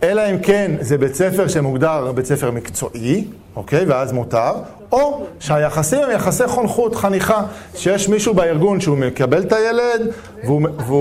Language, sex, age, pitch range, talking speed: Hebrew, male, 40-59, 140-205 Hz, 145 wpm